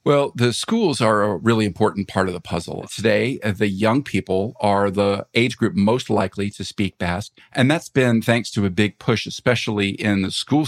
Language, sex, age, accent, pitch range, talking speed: English, male, 50-69, American, 100-115 Hz, 200 wpm